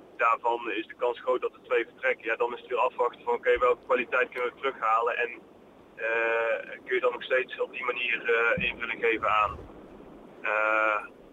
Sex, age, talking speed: male, 40-59, 200 wpm